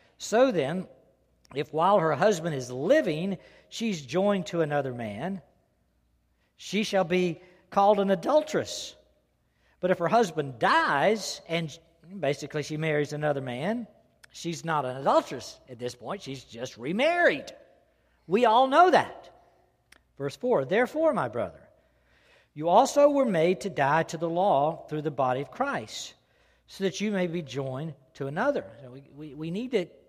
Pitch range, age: 130-205 Hz, 50-69